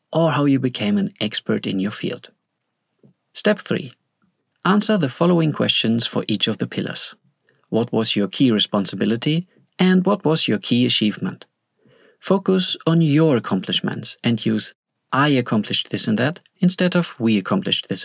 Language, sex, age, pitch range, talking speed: English, male, 40-59, 120-185 Hz, 155 wpm